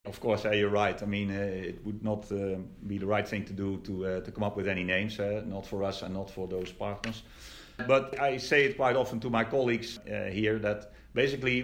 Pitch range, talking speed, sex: 100-120 Hz, 240 wpm, male